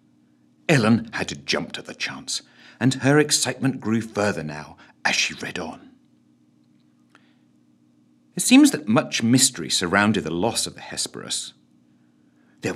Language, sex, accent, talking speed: English, male, British, 135 wpm